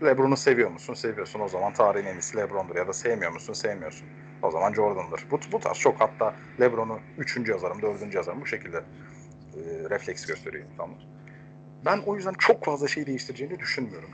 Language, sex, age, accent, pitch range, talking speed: Turkish, male, 40-59, native, 125-170 Hz, 180 wpm